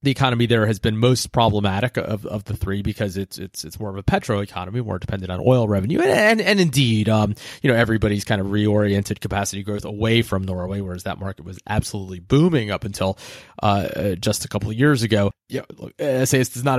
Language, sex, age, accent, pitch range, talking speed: English, male, 30-49, American, 105-125 Hz, 220 wpm